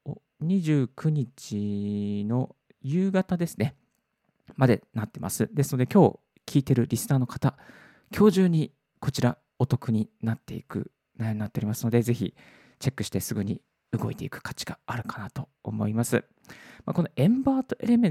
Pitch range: 115-165 Hz